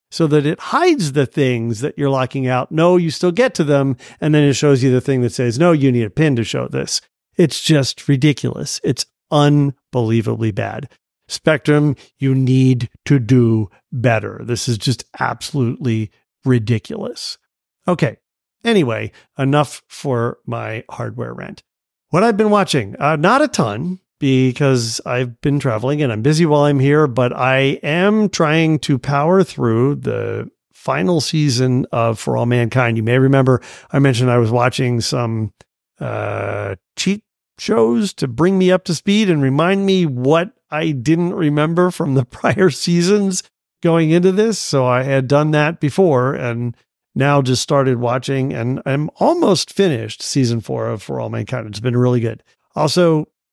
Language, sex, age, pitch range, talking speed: English, male, 50-69, 120-160 Hz, 165 wpm